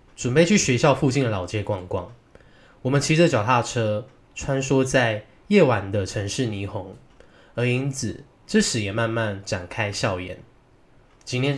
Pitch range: 105-130 Hz